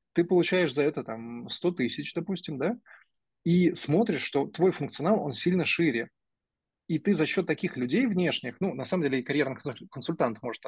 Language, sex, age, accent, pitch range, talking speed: Russian, male, 20-39, native, 125-170 Hz, 180 wpm